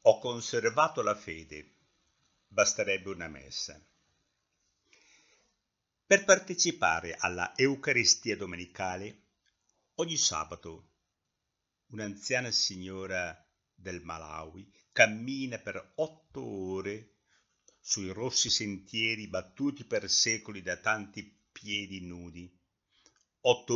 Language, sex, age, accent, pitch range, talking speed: Italian, male, 60-79, native, 90-125 Hz, 85 wpm